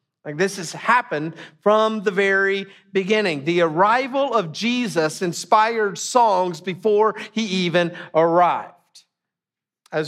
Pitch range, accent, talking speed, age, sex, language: 170-215 Hz, American, 115 wpm, 50-69, male, English